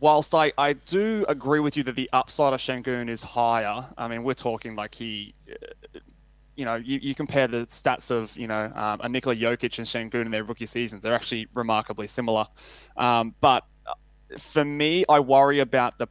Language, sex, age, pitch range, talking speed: English, male, 20-39, 115-140 Hz, 195 wpm